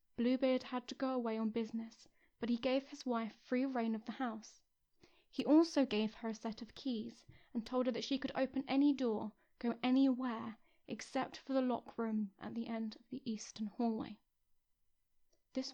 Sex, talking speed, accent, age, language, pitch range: female, 185 wpm, British, 10-29, English, 225-265 Hz